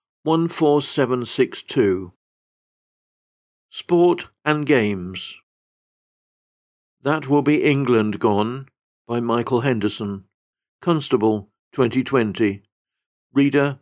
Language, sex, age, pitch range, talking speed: English, male, 50-69, 115-145 Hz, 65 wpm